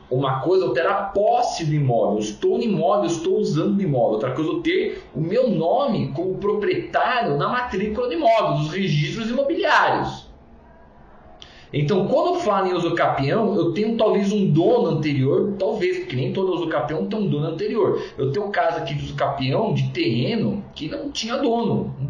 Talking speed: 180 wpm